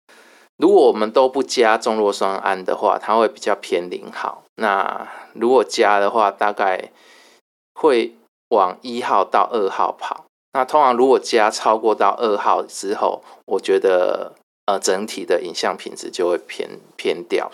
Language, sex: Chinese, male